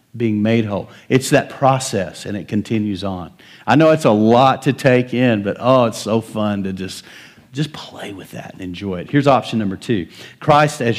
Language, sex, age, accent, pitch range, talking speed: English, male, 50-69, American, 100-130 Hz, 210 wpm